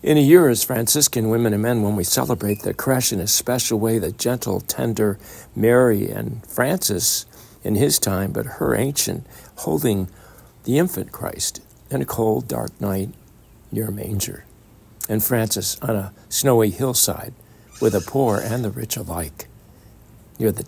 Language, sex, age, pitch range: English, male, 60-79, 100-120 Hz